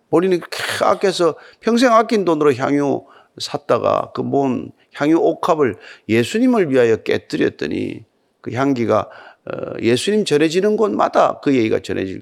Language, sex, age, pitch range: Korean, male, 40-59, 145-235 Hz